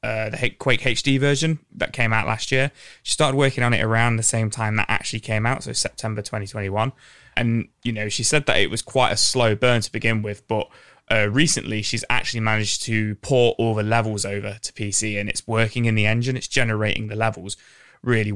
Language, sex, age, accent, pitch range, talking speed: English, male, 20-39, British, 105-120 Hz, 220 wpm